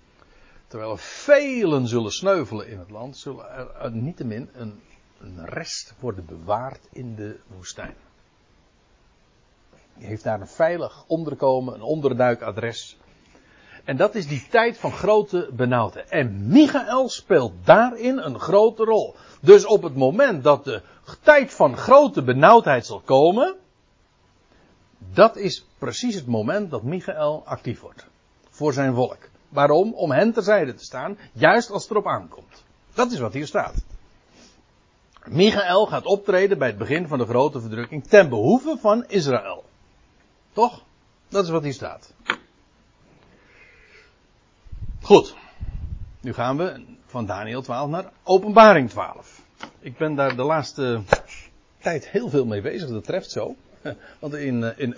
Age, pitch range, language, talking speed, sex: 60-79, 120-200 Hz, Dutch, 140 wpm, male